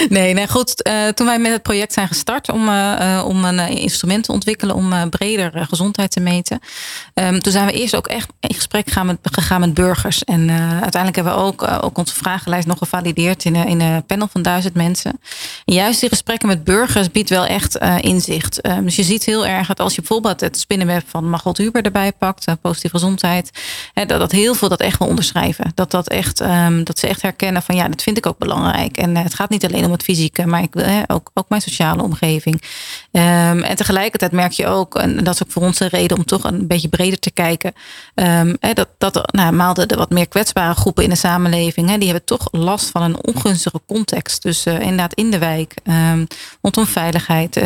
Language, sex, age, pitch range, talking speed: Dutch, female, 30-49, 175-205 Hz, 215 wpm